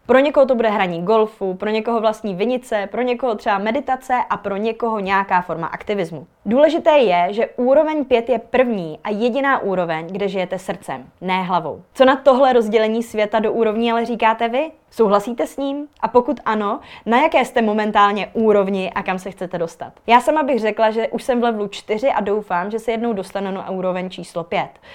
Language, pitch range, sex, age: Czech, 190-235 Hz, female, 20-39